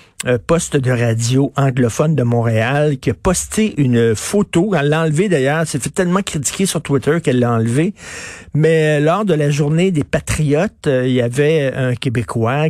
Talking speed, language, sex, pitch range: 175 wpm, French, male, 135-180 Hz